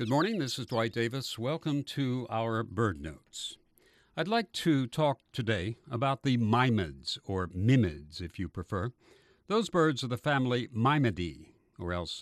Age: 60-79